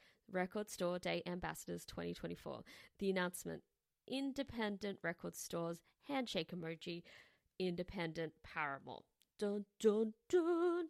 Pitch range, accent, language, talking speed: 170-225 Hz, Australian, English, 105 wpm